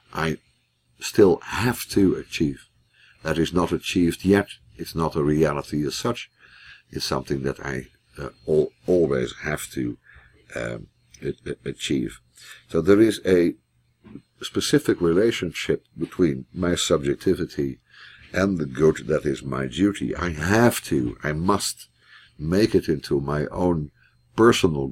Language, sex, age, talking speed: English, male, 60-79, 130 wpm